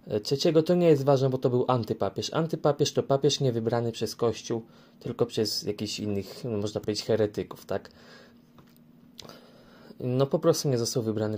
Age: 20-39